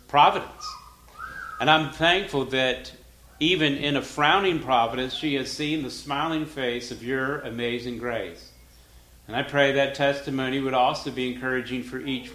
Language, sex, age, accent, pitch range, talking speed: English, male, 50-69, American, 120-145 Hz, 150 wpm